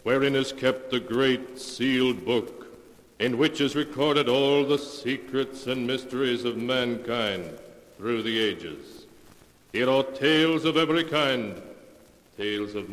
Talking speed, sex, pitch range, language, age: 135 wpm, male, 110-155 Hz, English, 60-79